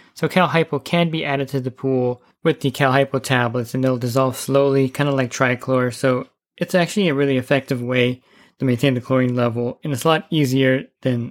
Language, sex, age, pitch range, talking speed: English, male, 20-39, 125-135 Hz, 200 wpm